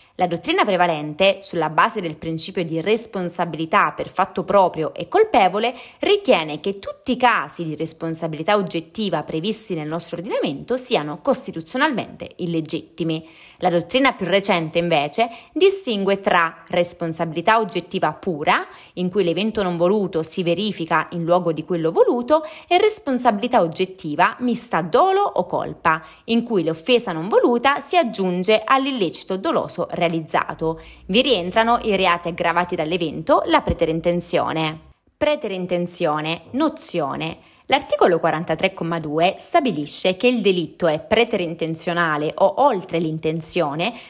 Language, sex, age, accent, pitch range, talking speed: Italian, female, 20-39, native, 165-230 Hz, 120 wpm